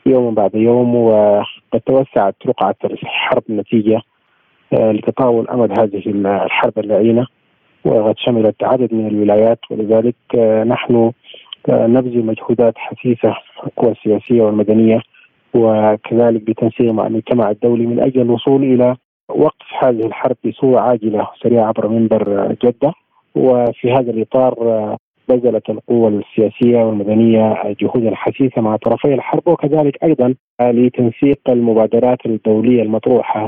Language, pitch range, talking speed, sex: Arabic, 110-125 Hz, 110 wpm, male